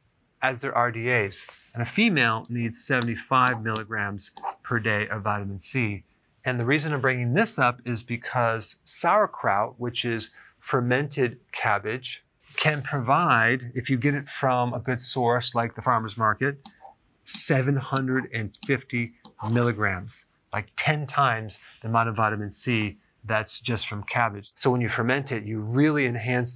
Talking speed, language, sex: 145 wpm, English, male